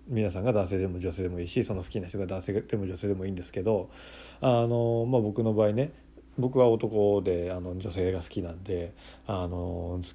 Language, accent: Japanese, native